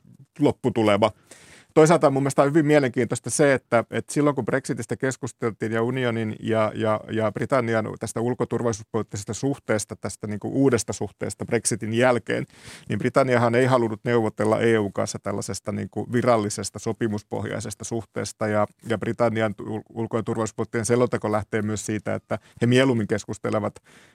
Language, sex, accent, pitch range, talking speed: Finnish, male, native, 110-125 Hz, 125 wpm